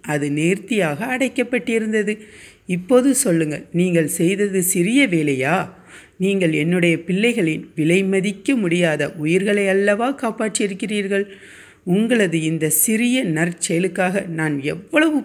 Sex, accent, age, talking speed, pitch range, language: female, native, 50-69, 95 wpm, 160-200 Hz, Tamil